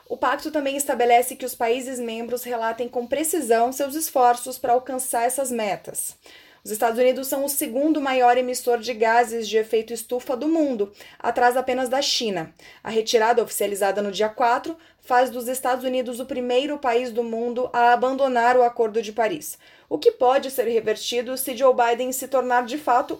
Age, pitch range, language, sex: 20-39, 230-265 Hz, Portuguese, female